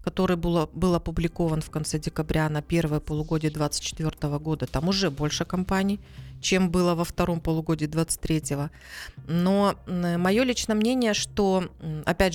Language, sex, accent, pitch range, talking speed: Russian, female, native, 150-190 Hz, 135 wpm